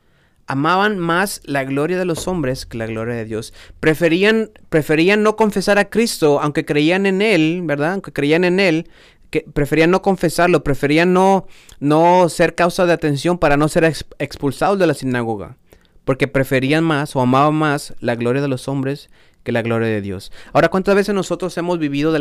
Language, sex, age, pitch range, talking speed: Spanish, male, 30-49, 125-170 Hz, 180 wpm